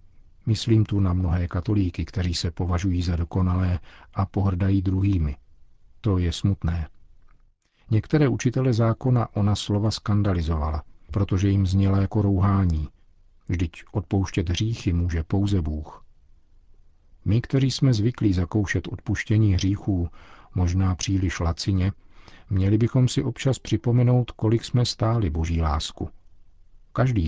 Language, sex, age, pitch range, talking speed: Czech, male, 50-69, 85-105 Hz, 120 wpm